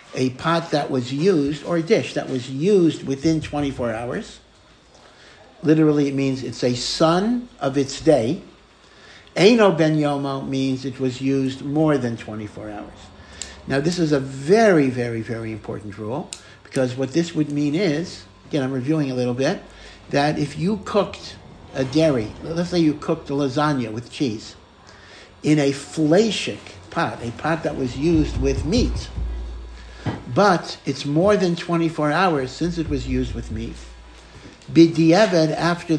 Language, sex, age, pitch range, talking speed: English, male, 60-79, 125-160 Hz, 160 wpm